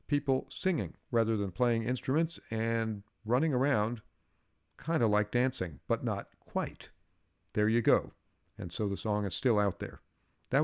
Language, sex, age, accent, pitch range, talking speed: English, male, 50-69, American, 105-130 Hz, 160 wpm